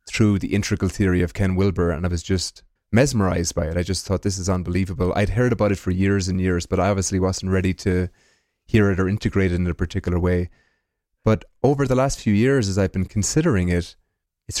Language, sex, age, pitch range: English, male, 30-49, 90-105 Hz